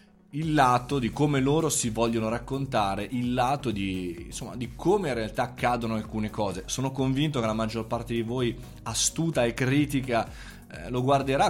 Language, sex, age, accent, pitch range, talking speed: Italian, male, 20-39, native, 115-160 Hz, 170 wpm